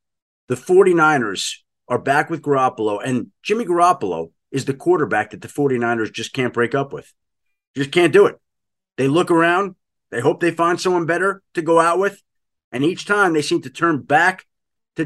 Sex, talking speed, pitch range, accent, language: male, 185 wpm, 125-170 Hz, American, English